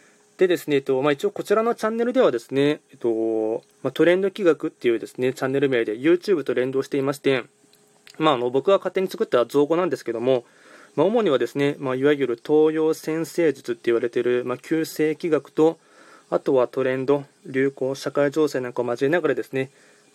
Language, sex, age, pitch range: Japanese, male, 20-39, 130-170 Hz